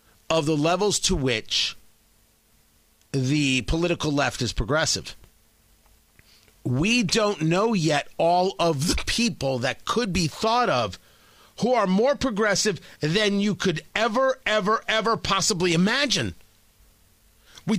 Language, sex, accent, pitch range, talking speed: English, male, American, 110-175 Hz, 120 wpm